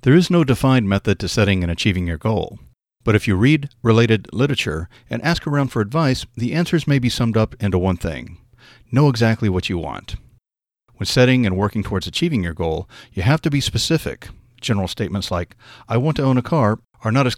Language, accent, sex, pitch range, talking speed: English, American, male, 100-130 Hz, 210 wpm